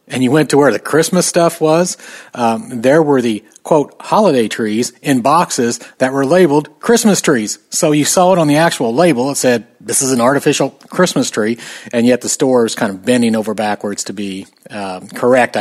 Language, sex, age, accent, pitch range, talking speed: English, male, 40-59, American, 110-140 Hz, 205 wpm